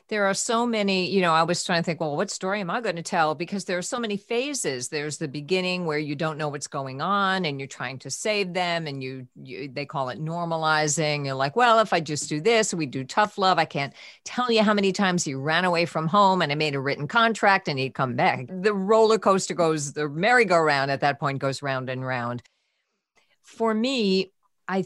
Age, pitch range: 50-69, 140-185 Hz